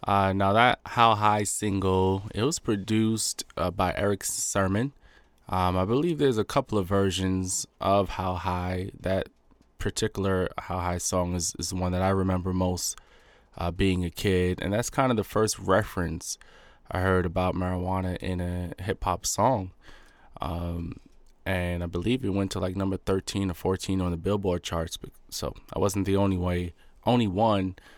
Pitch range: 90-105 Hz